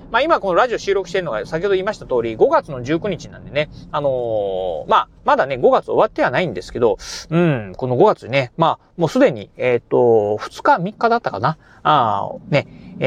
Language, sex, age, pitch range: Japanese, male, 40-59, 135-210 Hz